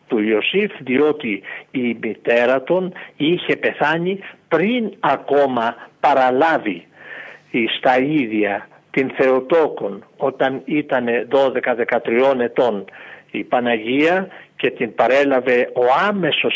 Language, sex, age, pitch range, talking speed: Greek, male, 50-69, 125-190 Hz, 95 wpm